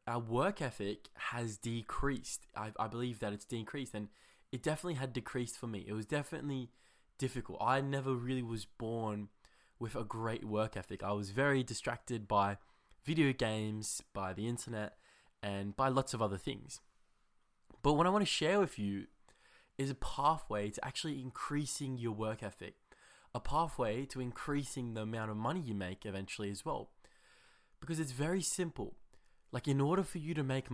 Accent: Australian